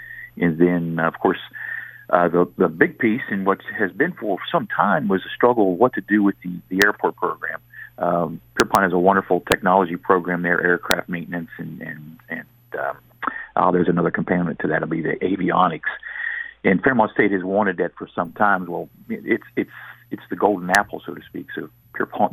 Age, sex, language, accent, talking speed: 50-69, male, English, American, 195 wpm